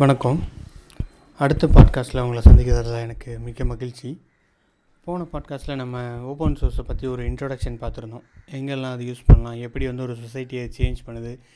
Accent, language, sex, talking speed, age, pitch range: native, Tamil, male, 145 wpm, 30-49, 120-140 Hz